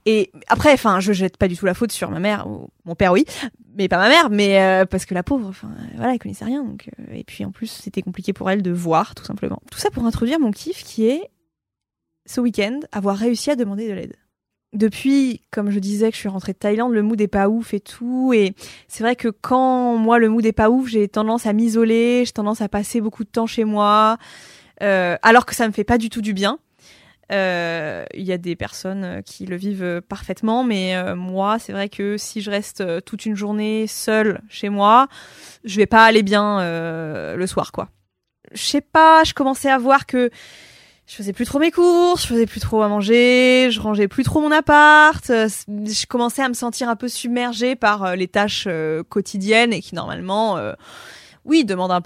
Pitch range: 195-240 Hz